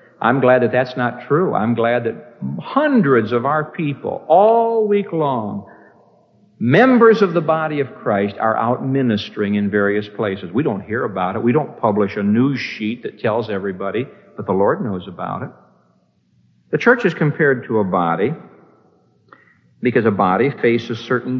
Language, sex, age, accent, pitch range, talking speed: English, male, 60-79, American, 105-145 Hz, 170 wpm